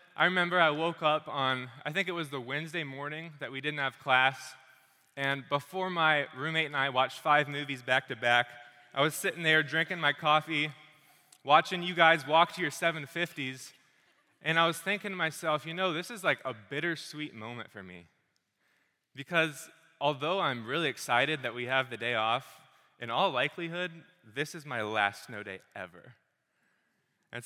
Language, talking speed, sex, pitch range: English, 175 wpm, male, 135-170 Hz